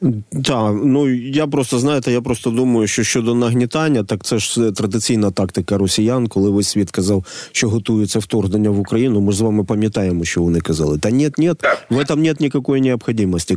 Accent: native